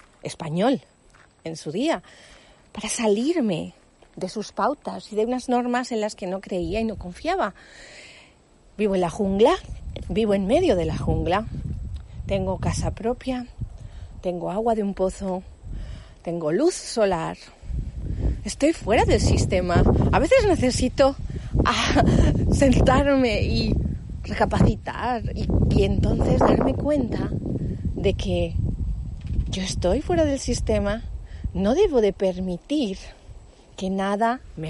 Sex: female